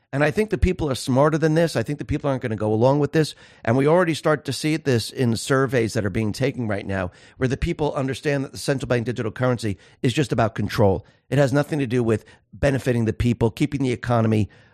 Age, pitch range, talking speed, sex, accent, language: 50-69, 115-150 Hz, 250 wpm, male, American, English